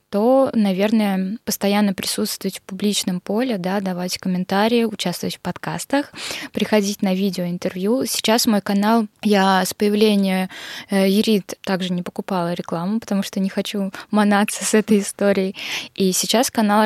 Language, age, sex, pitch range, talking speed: Russian, 20-39, female, 185-210 Hz, 135 wpm